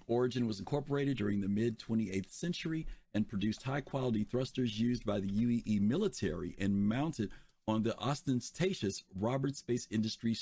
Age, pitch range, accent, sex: 50-69, 105-135 Hz, American, male